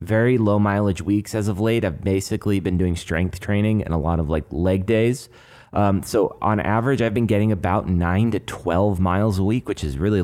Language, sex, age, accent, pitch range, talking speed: English, male, 30-49, American, 90-110 Hz, 215 wpm